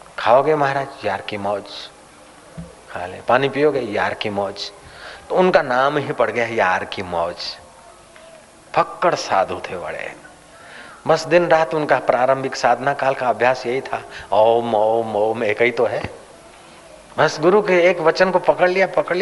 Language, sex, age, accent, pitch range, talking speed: Hindi, male, 40-59, native, 115-175 Hz, 160 wpm